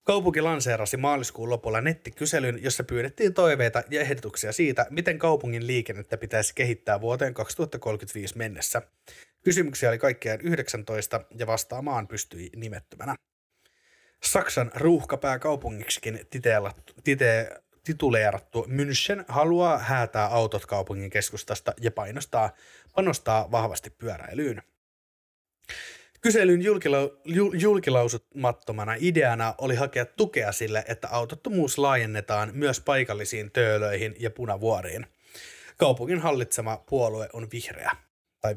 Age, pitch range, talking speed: 30-49, 110-145 Hz, 100 wpm